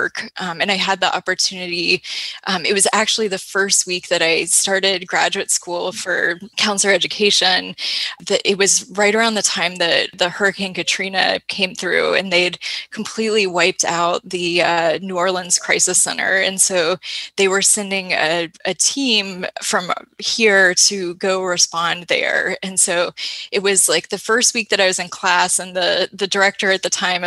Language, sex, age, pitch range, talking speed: English, female, 10-29, 185-225 Hz, 170 wpm